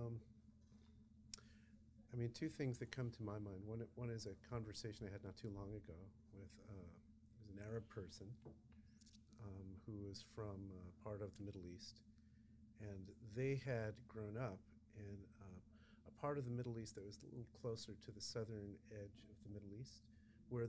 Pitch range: 105-115 Hz